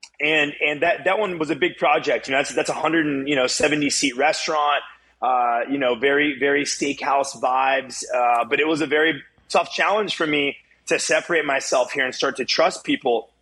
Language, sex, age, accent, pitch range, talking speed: English, male, 30-49, American, 130-155 Hz, 205 wpm